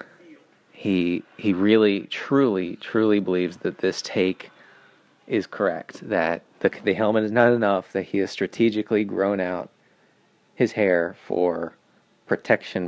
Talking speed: 130 wpm